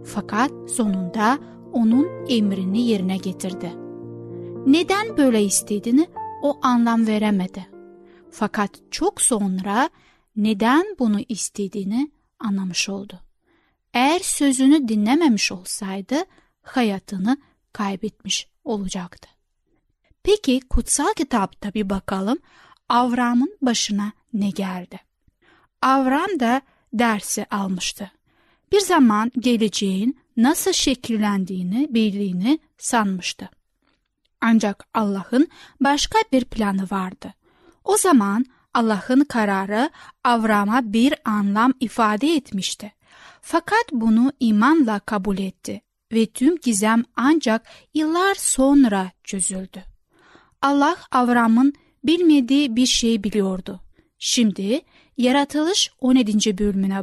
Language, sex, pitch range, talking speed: Turkish, female, 200-275 Hz, 90 wpm